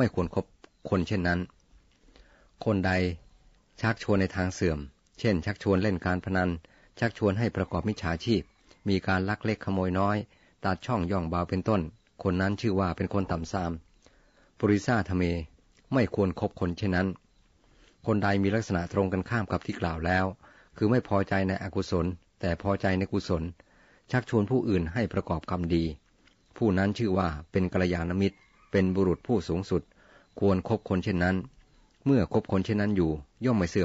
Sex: male